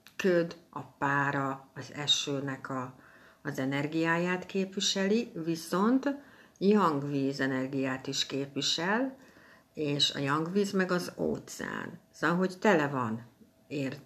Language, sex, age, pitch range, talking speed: Hungarian, female, 60-79, 135-170 Hz, 100 wpm